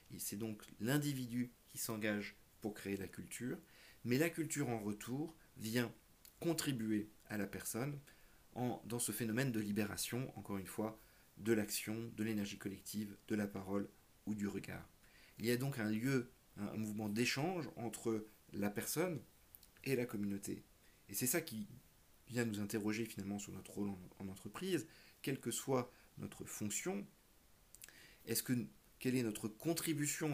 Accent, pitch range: French, 100-125 Hz